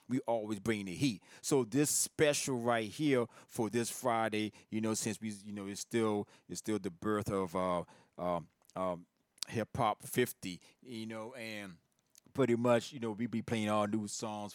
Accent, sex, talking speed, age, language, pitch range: American, male, 185 wpm, 30-49, English, 90-115 Hz